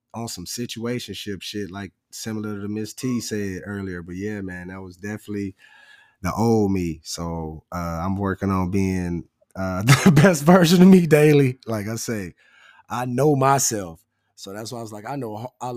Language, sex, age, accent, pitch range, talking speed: English, male, 20-39, American, 100-130 Hz, 185 wpm